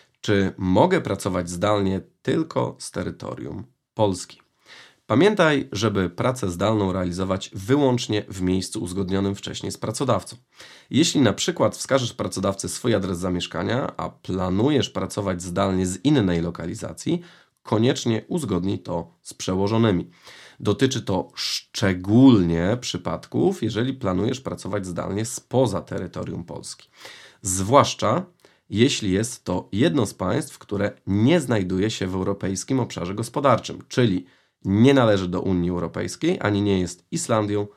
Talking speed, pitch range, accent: 120 wpm, 90-115 Hz, native